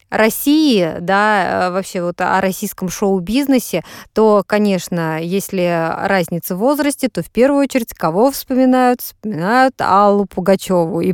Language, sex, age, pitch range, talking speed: Russian, female, 20-39, 185-245 Hz, 125 wpm